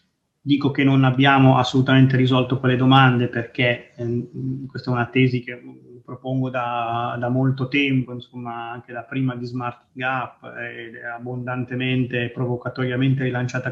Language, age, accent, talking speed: Italian, 20-39, native, 145 wpm